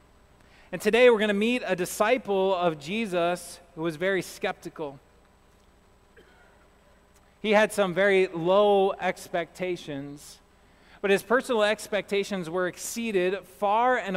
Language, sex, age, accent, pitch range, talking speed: English, male, 30-49, American, 170-200 Hz, 120 wpm